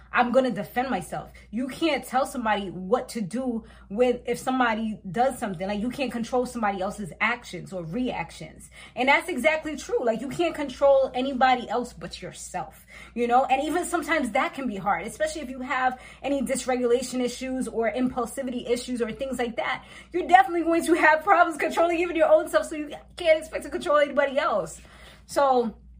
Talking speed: 185 wpm